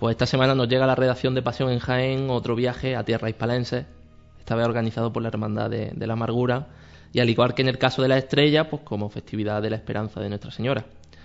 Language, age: Spanish, 20-39